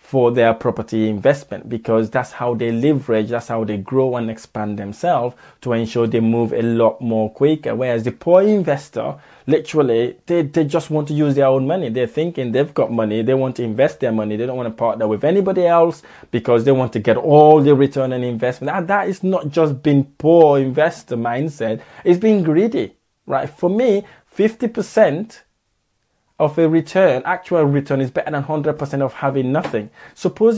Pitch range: 125-175 Hz